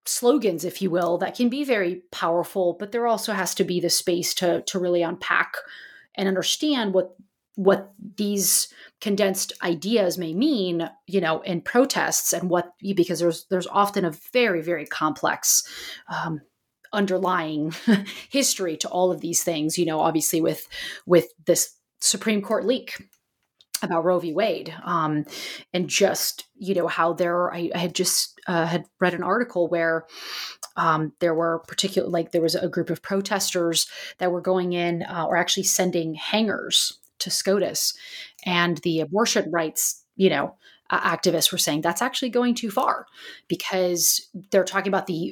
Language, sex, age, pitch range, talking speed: English, female, 30-49, 170-205 Hz, 165 wpm